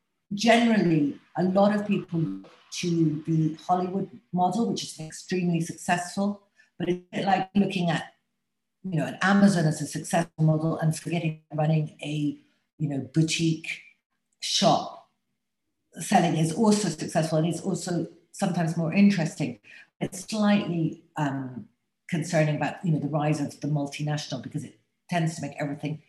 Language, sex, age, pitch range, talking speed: English, female, 50-69, 150-190 Hz, 150 wpm